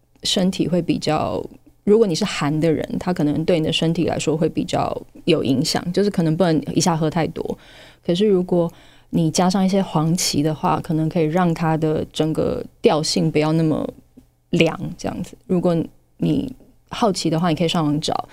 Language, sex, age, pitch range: Chinese, female, 20-39, 155-185 Hz